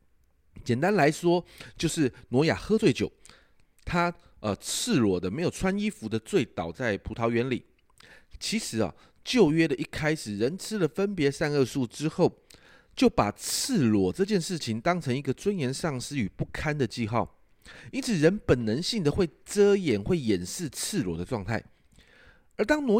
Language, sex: Chinese, male